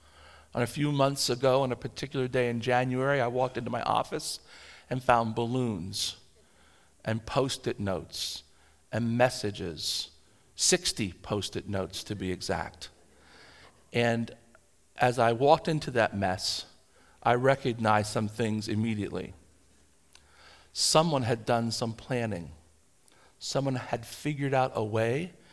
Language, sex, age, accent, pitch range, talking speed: English, male, 50-69, American, 105-140 Hz, 125 wpm